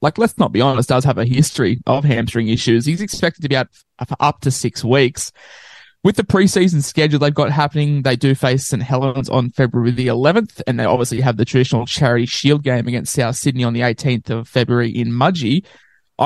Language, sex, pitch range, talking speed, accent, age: English, male, 125-145 Hz, 210 wpm, Australian, 20-39